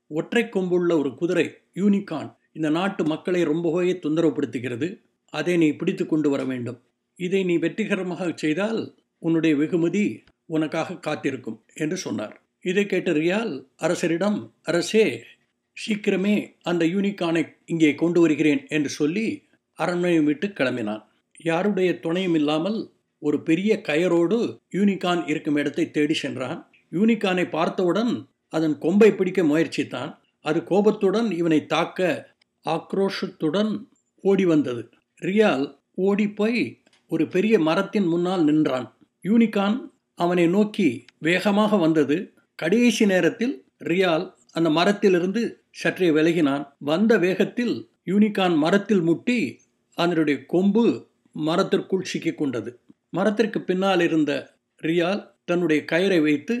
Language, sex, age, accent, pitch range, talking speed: Tamil, male, 60-79, native, 155-200 Hz, 110 wpm